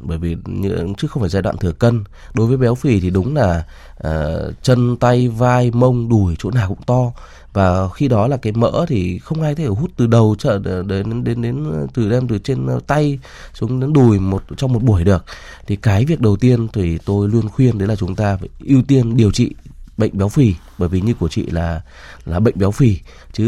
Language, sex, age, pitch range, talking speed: Vietnamese, male, 20-39, 95-125 Hz, 225 wpm